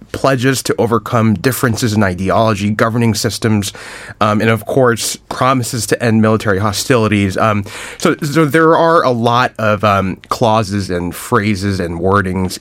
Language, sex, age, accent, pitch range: Korean, male, 30-49, American, 95-120 Hz